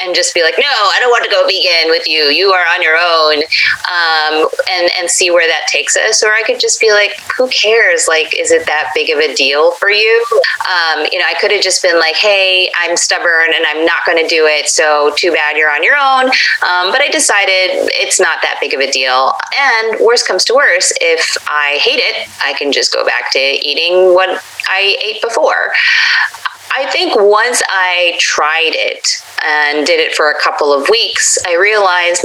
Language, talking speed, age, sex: English, 215 wpm, 20-39, female